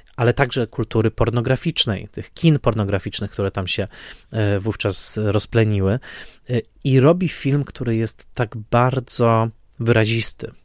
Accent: native